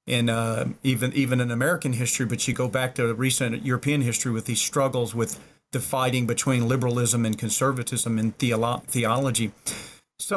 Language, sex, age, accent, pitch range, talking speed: English, male, 40-59, American, 120-150 Hz, 175 wpm